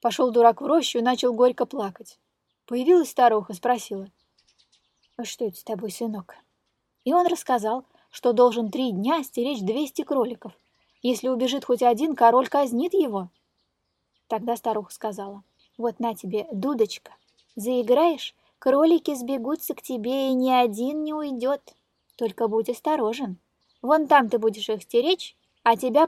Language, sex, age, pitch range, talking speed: Russian, female, 20-39, 220-280 Hz, 145 wpm